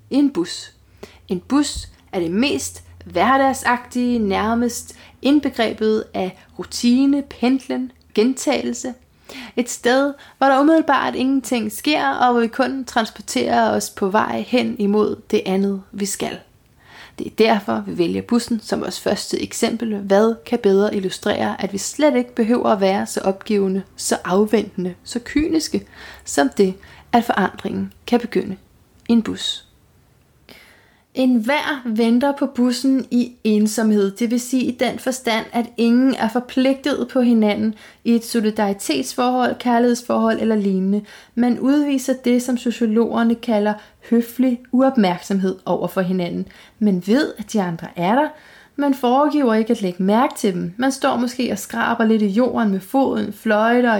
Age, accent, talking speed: 30-49, native, 145 wpm